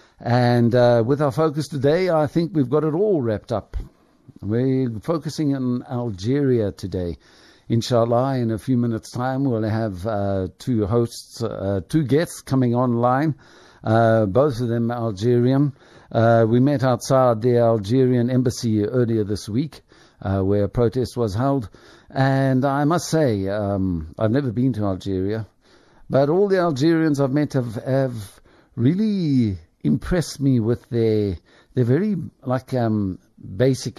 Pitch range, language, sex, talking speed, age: 105-135 Hz, English, male, 150 wpm, 60-79